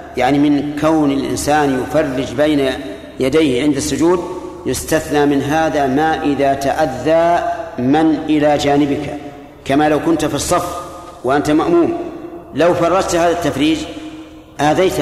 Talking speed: 120 wpm